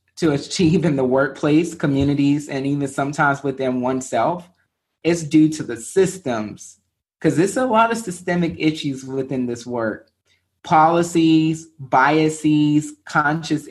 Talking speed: 125 wpm